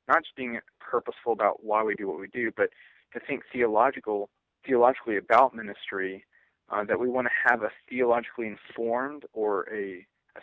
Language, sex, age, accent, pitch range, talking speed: English, male, 40-59, American, 105-125 Hz, 175 wpm